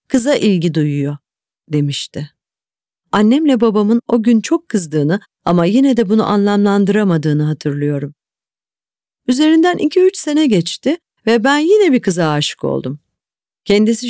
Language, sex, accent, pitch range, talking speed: Turkish, female, native, 180-260 Hz, 125 wpm